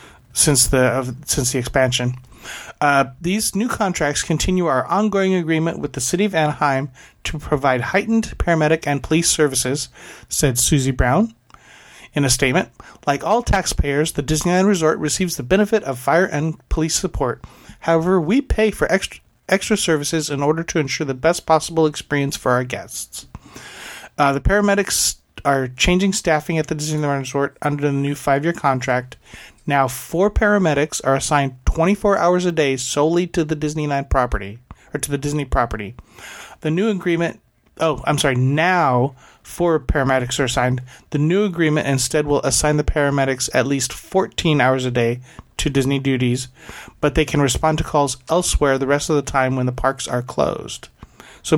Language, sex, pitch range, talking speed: English, male, 135-165 Hz, 170 wpm